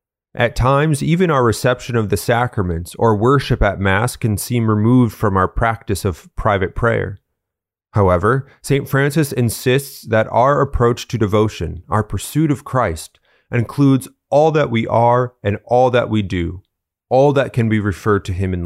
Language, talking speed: English, 165 wpm